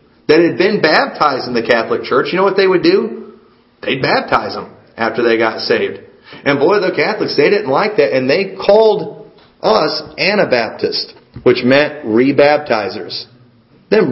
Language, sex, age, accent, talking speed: English, male, 40-59, American, 160 wpm